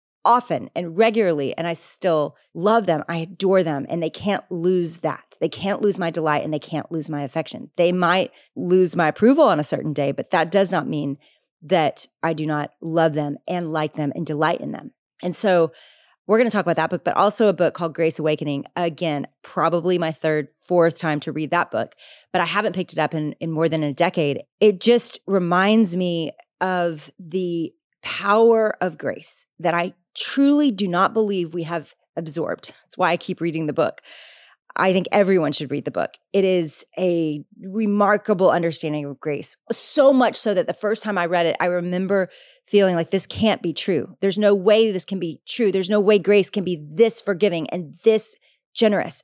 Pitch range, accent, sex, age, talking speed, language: 160-205 Hz, American, female, 30-49, 205 wpm, English